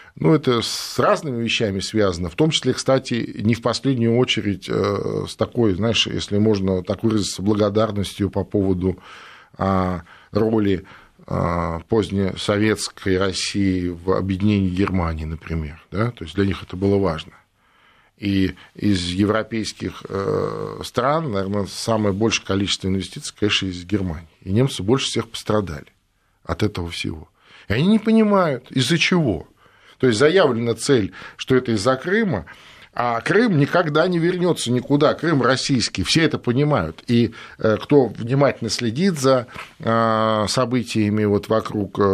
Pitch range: 95-125 Hz